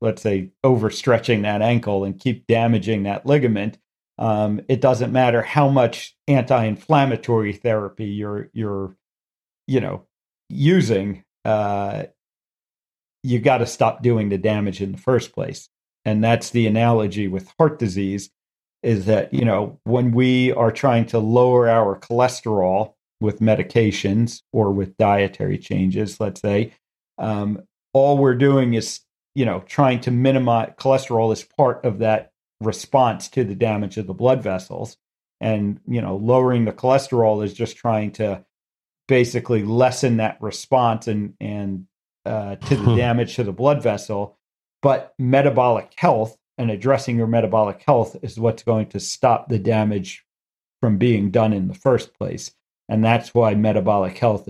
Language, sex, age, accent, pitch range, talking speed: English, male, 50-69, American, 105-120 Hz, 150 wpm